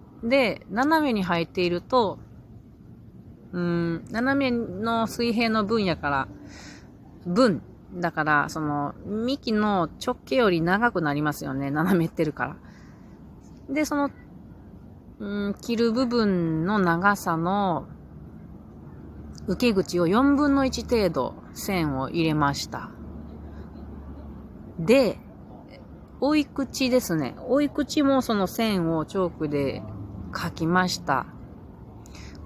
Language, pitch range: Japanese, 150-215 Hz